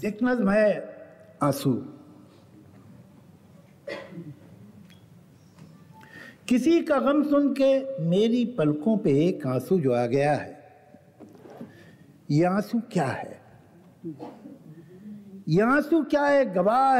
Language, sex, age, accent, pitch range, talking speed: Hindi, male, 60-79, native, 145-235 Hz, 80 wpm